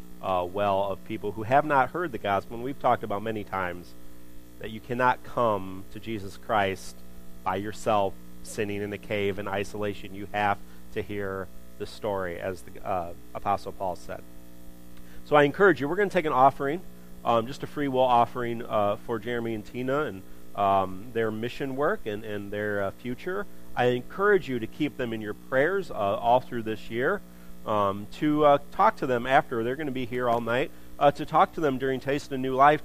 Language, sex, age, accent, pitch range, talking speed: English, male, 40-59, American, 95-125 Hz, 205 wpm